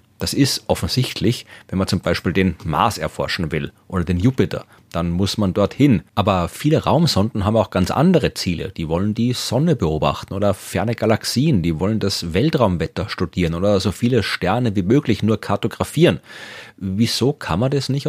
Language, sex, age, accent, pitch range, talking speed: German, male, 40-59, German, 95-125 Hz, 175 wpm